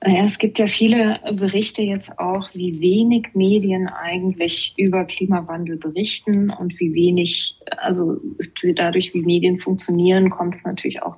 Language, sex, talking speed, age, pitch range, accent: German, female, 145 wpm, 20-39, 175-205 Hz, German